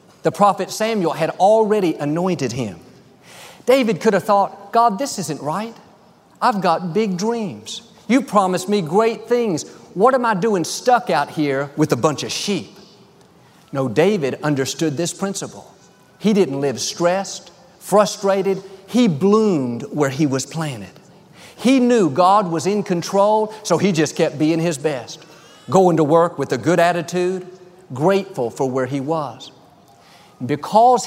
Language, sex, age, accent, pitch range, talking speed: English, male, 40-59, American, 150-205 Hz, 150 wpm